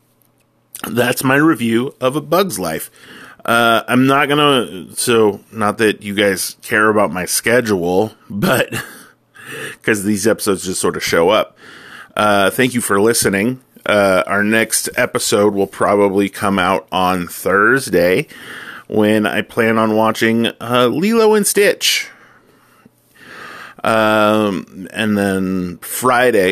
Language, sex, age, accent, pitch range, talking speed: English, male, 30-49, American, 105-130 Hz, 130 wpm